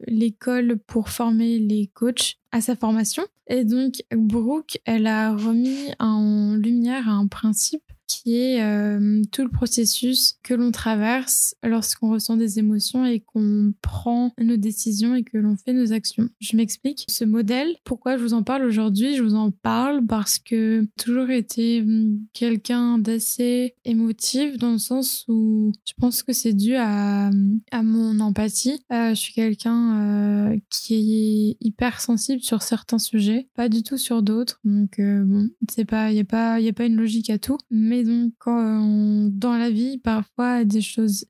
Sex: female